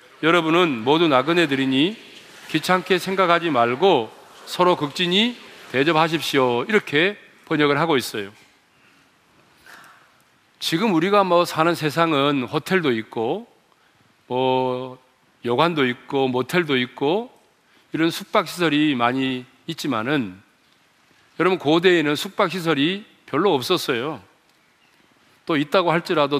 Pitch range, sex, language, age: 135-180 Hz, male, Korean, 40-59